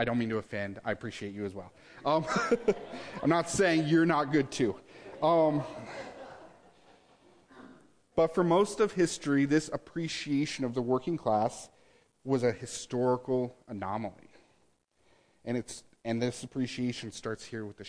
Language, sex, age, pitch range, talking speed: English, male, 40-59, 110-135 Hz, 140 wpm